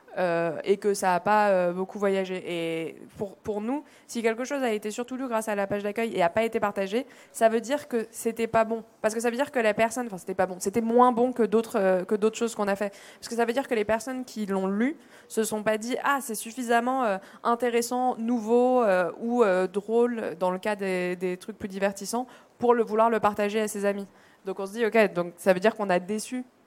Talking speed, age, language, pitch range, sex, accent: 255 wpm, 20-39, French, 190-235 Hz, female, French